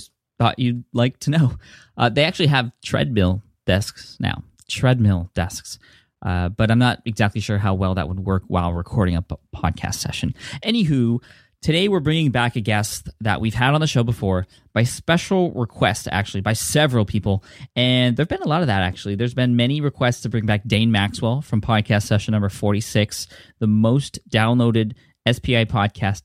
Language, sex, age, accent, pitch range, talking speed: English, male, 20-39, American, 105-130 Hz, 180 wpm